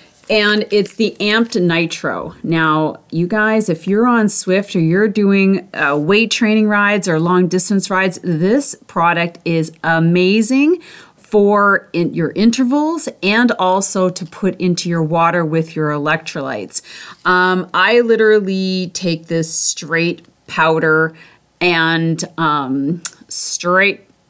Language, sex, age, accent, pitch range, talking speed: English, female, 30-49, American, 170-210 Hz, 120 wpm